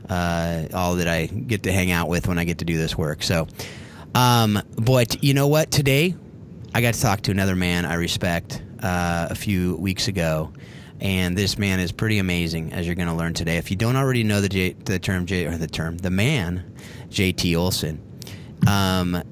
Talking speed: 210 wpm